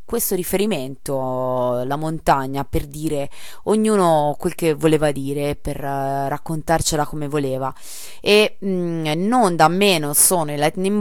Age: 20-39